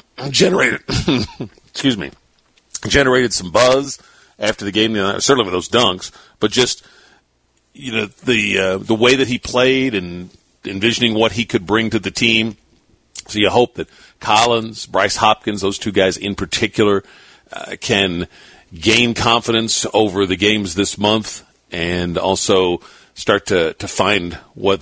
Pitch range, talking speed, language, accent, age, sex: 85-110 Hz, 150 wpm, English, American, 50-69, male